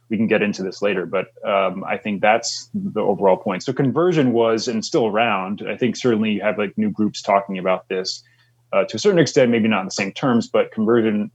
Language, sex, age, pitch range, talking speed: English, male, 20-39, 95-120 Hz, 235 wpm